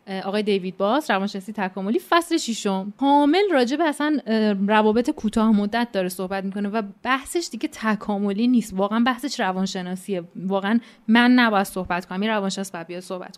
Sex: female